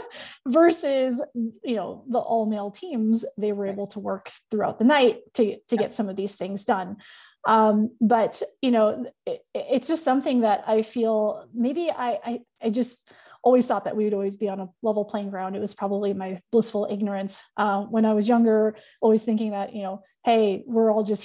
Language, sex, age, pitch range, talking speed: English, female, 20-39, 200-245 Hz, 200 wpm